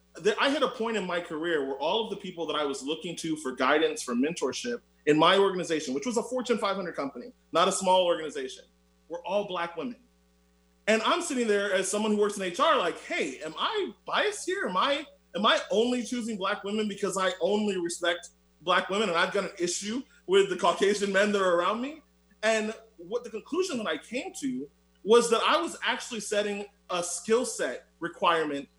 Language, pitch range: English, 175-235 Hz